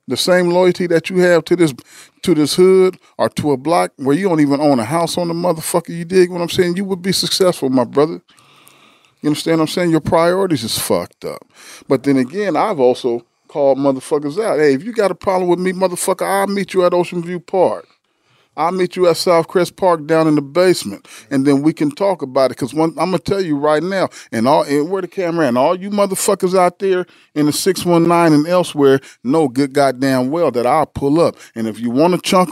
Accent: American